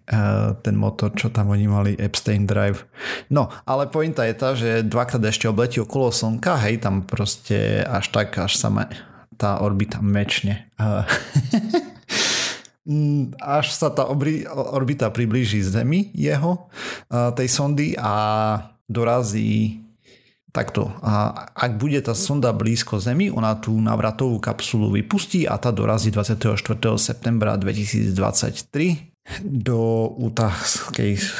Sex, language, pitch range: male, Slovak, 100-120 Hz